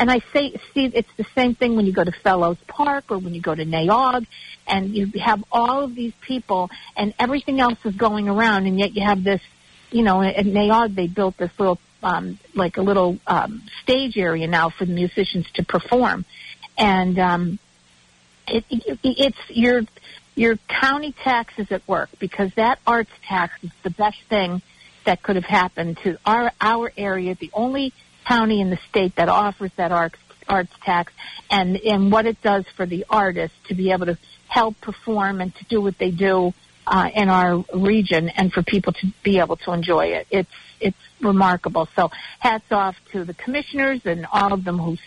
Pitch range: 180-220 Hz